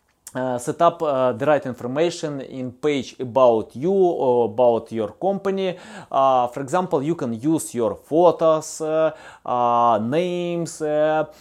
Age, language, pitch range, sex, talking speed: 20-39, English, 135-175 Hz, male, 140 wpm